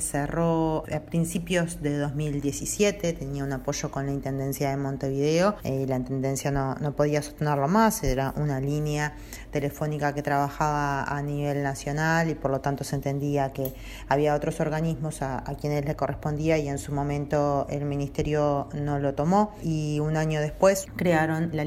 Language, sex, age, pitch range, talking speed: Spanish, female, 20-39, 140-155 Hz, 165 wpm